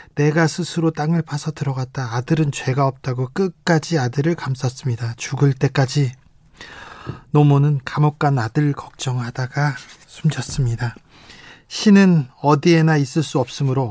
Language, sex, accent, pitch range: Korean, male, native, 130-160 Hz